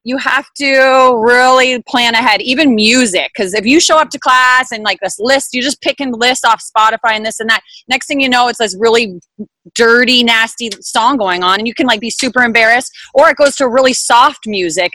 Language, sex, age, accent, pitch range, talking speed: English, female, 30-49, American, 210-255 Hz, 220 wpm